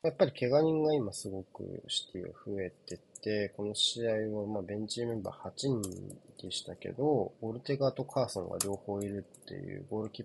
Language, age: Japanese, 20-39